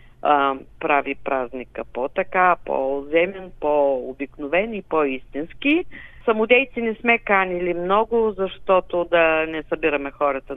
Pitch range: 150-210 Hz